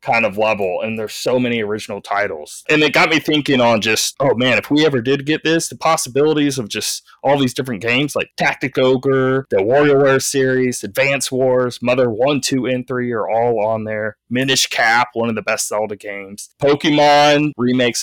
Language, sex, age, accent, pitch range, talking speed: English, male, 20-39, American, 110-130 Hz, 200 wpm